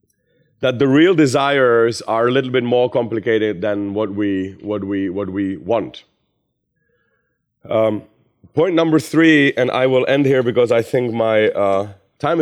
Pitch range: 95-130 Hz